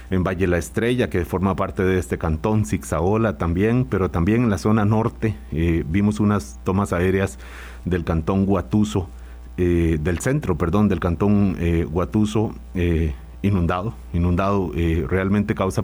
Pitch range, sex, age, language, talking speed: 85-105 Hz, male, 40-59, Spanish, 150 wpm